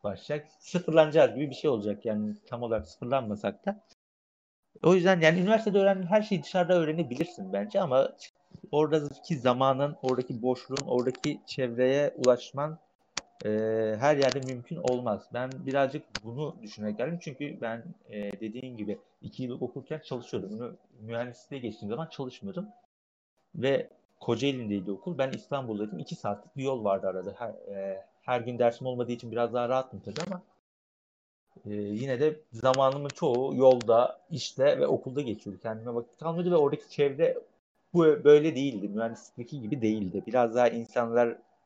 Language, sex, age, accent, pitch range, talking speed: Turkish, male, 50-69, native, 110-155 Hz, 145 wpm